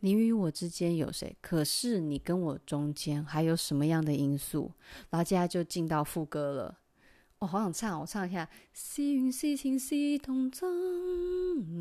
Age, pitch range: 30-49, 155-190 Hz